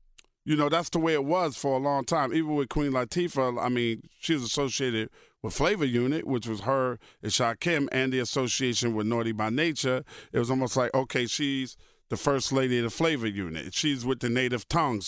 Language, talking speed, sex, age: English, 210 wpm, male, 40-59